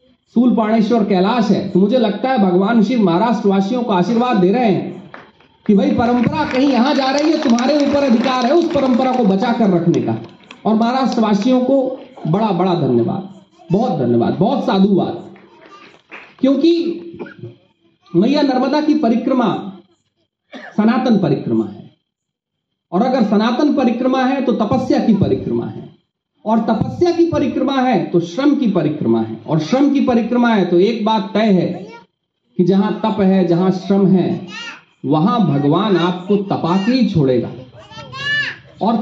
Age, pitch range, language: 40-59, 185-260 Hz, Hindi